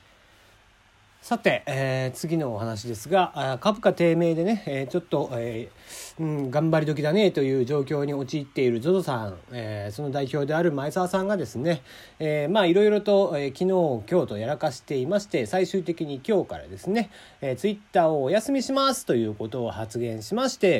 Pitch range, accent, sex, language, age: 125-200 Hz, native, male, Japanese, 40-59